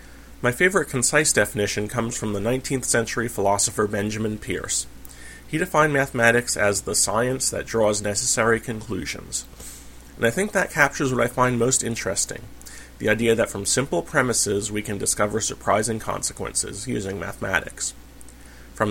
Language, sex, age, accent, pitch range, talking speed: English, male, 30-49, American, 100-125 Hz, 145 wpm